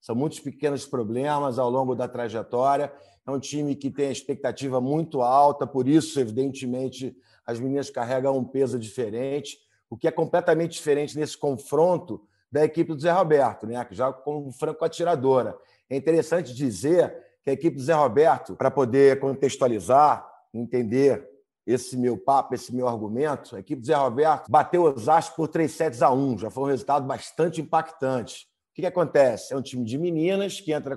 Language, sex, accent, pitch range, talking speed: Portuguese, male, Brazilian, 130-165 Hz, 180 wpm